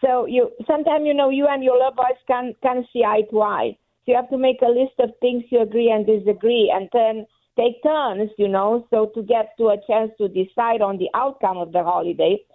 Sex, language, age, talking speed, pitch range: female, English, 50-69, 235 wpm, 215-265 Hz